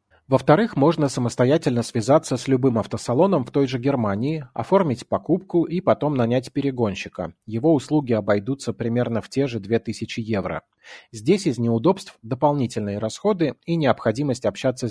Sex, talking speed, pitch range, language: male, 135 wpm, 115-145 Hz, Russian